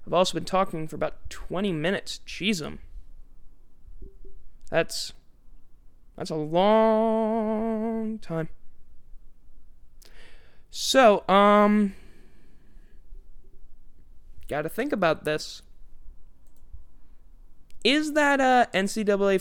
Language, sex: English, male